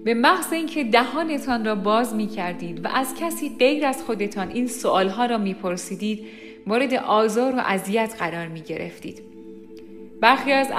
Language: Persian